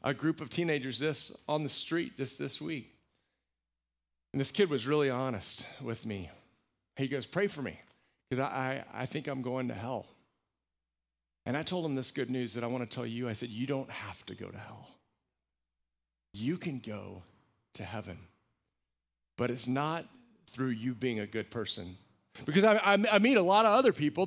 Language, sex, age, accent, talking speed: English, male, 40-59, American, 195 wpm